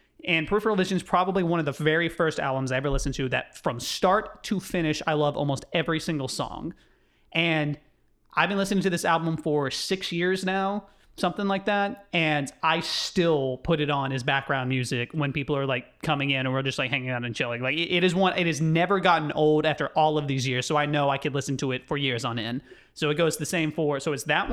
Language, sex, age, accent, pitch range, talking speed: English, male, 30-49, American, 140-175 Hz, 240 wpm